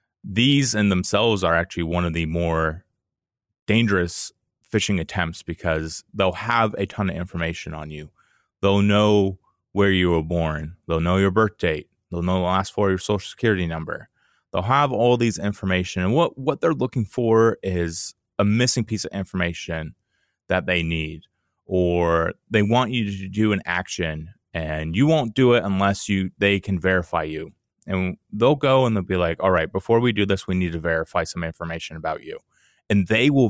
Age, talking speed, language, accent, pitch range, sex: 30-49, 190 wpm, English, American, 85-110 Hz, male